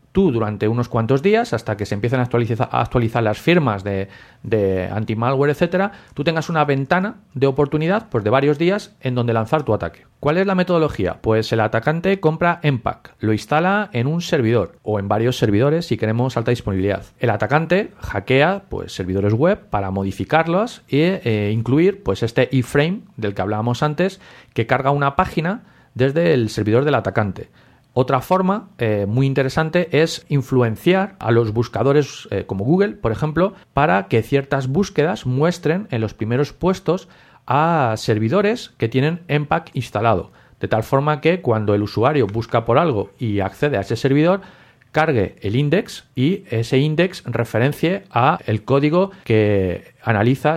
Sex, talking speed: male, 165 wpm